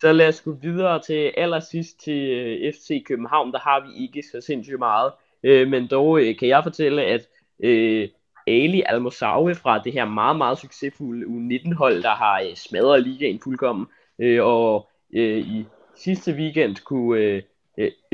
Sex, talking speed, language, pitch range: male, 165 wpm, Danish, 115-155 Hz